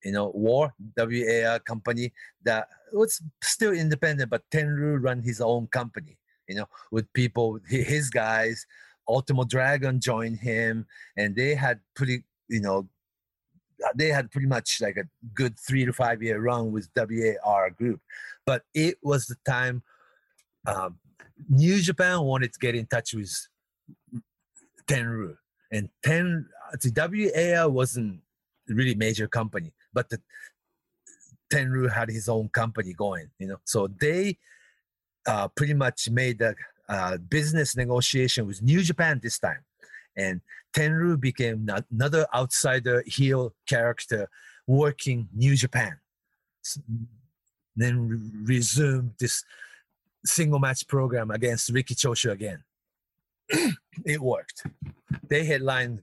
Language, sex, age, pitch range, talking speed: English, male, 40-59, 115-145 Hz, 125 wpm